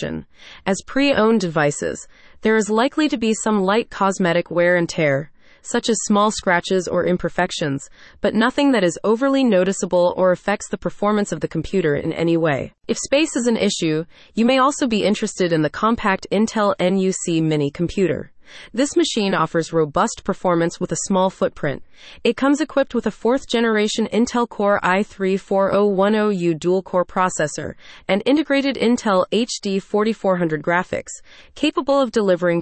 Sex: female